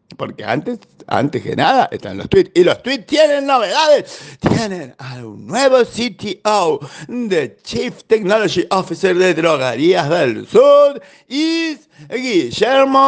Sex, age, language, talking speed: male, 50-69, Spanish, 130 wpm